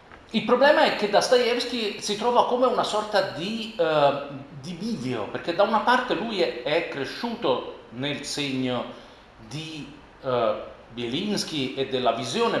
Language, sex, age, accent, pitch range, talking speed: Italian, male, 40-59, native, 135-195 Hz, 130 wpm